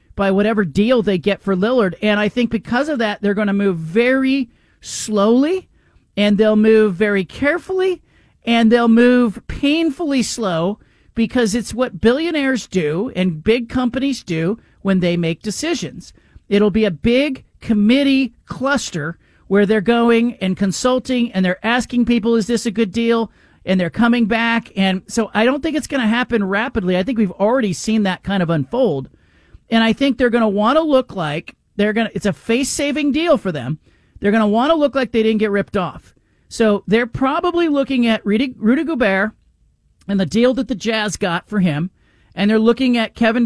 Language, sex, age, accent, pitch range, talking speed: English, male, 40-59, American, 195-245 Hz, 190 wpm